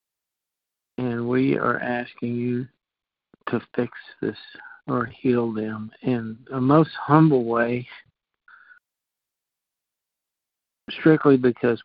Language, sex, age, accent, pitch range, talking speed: English, male, 50-69, American, 120-135 Hz, 90 wpm